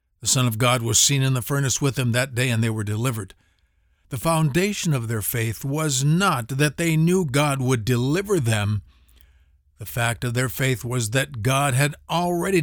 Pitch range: 105-150 Hz